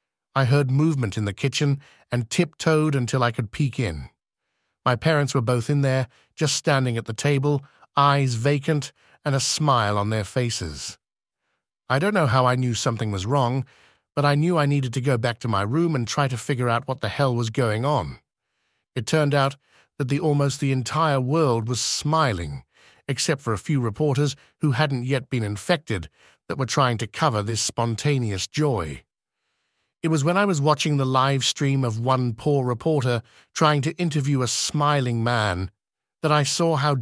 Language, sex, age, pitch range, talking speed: English, male, 50-69, 115-145 Hz, 185 wpm